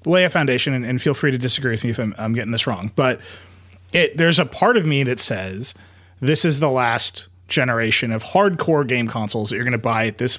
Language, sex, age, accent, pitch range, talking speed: English, male, 30-49, American, 100-135 Hz, 245 wpm